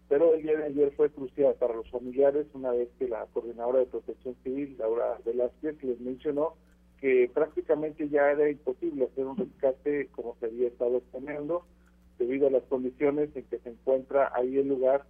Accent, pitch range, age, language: Mexican, 125-150 Hz, 40-59, Spanish